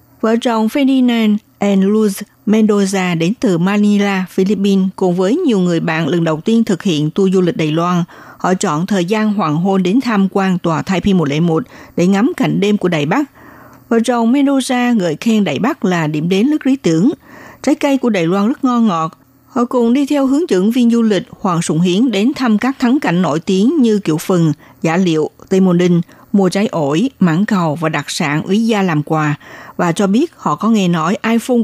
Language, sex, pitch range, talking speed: Vietnamese, female, 175-235 Hz, 210 wpm